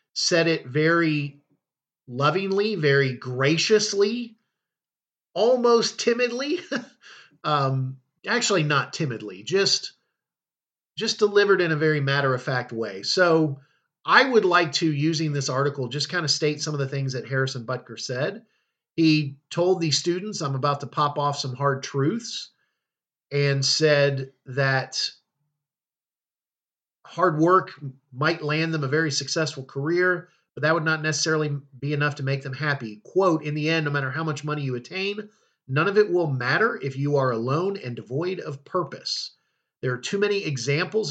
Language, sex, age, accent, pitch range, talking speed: English, male, 40-59, American, 140-180 Hz, 155 wpm